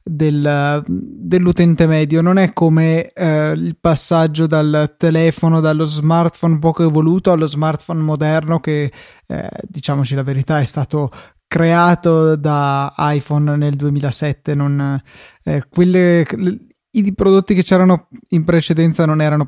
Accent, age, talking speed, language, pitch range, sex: native, 20-39, 125 wpm, Italian, 150-180 Hz, male